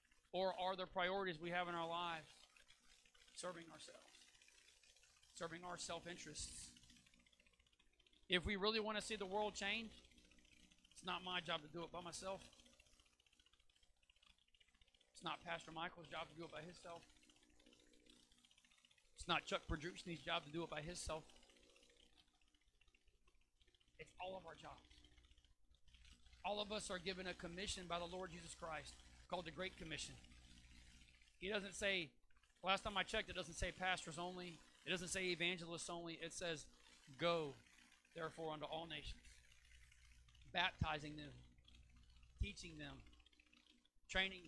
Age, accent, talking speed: 40-59, American, 140 wpm